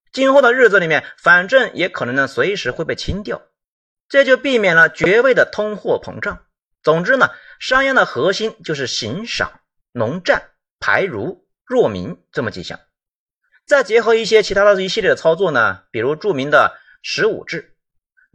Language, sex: Chinese, male